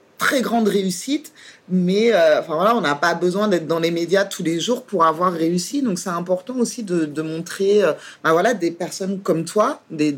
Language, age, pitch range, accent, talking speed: French, 30-49, 180-230 Hz, French, 210 wpm